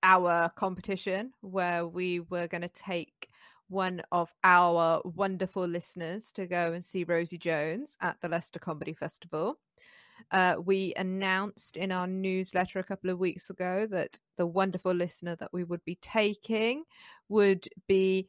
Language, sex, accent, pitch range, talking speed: English, female, British, 175-210 Hz, 150 wpm